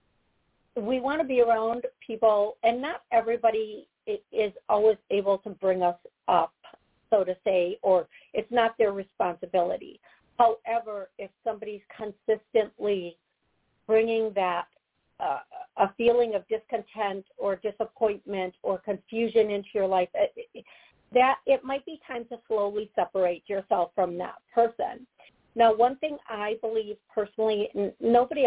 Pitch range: 190-230 Hz